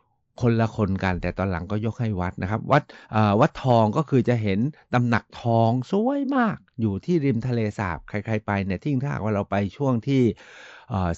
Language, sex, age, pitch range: Thai, male, 60-79, 100-130 Hz